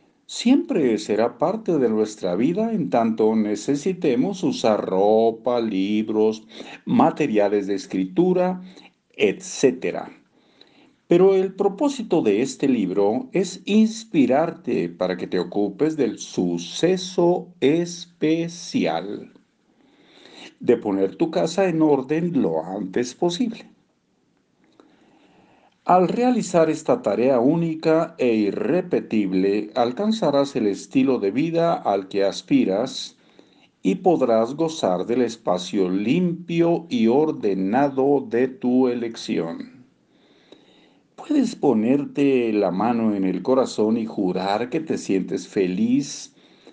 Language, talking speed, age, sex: Spanish, 100 wpm, 50-69, male